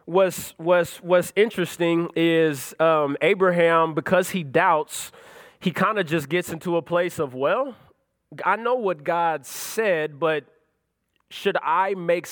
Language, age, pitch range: English, 20-39, 150-175 Hz